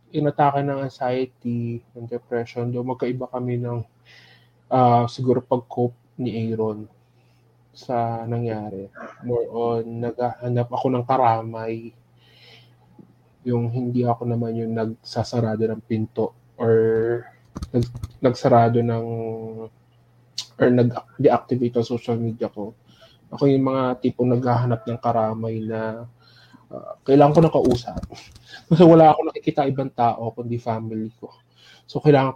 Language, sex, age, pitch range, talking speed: Filipino, male, 20-39, 115-130 Hz, 120 wpm